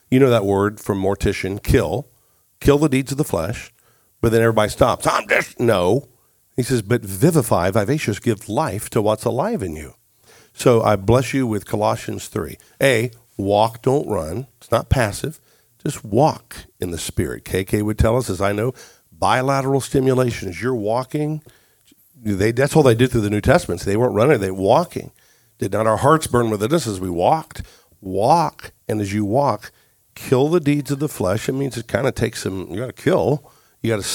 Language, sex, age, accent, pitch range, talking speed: English, male, 50-69, American, 105-130 Hz, 195 wpm